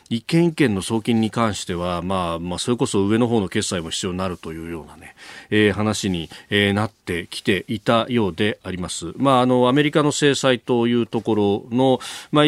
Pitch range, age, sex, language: 100-140 Hz, 30-49, male, Japanese